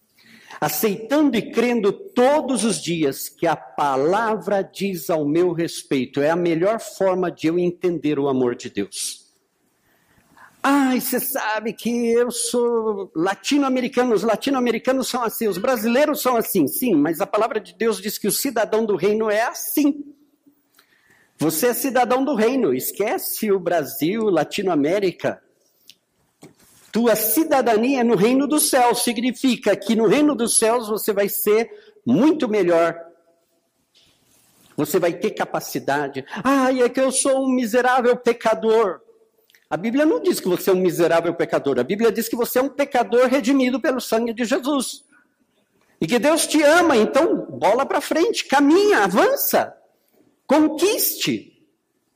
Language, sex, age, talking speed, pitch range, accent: Portuguese, male, 50-69, 145 wpm, 195-270 Hz, Brazilian